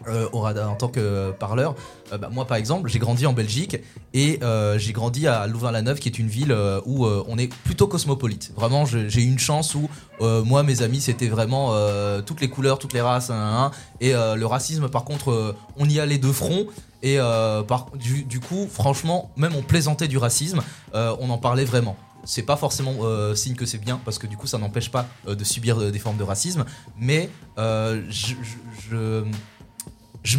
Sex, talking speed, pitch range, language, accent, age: male, 220 wpm, 110-140 Hz, French, French, 20-39